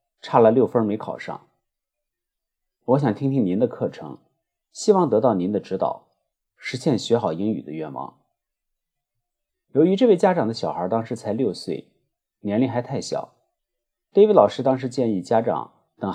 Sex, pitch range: male, 115-175 Hz